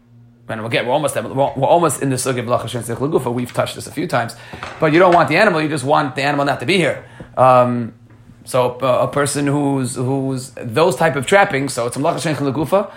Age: 30-49